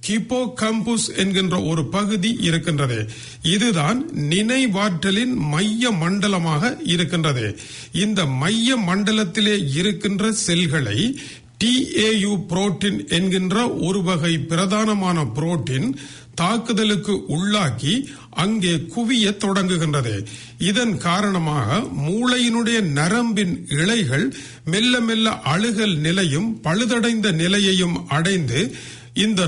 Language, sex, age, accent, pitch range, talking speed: English, male, 50-69, Indian, 160-215 Hz, 75 wpm